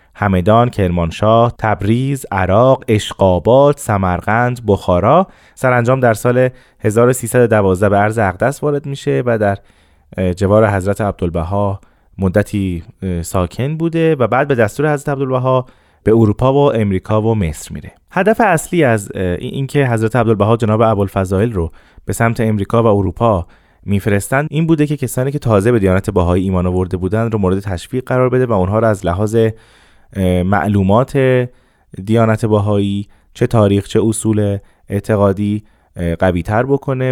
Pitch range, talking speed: 95-125 Hz, 140 wpm